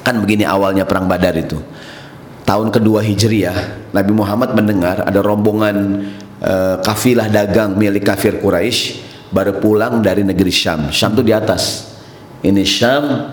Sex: male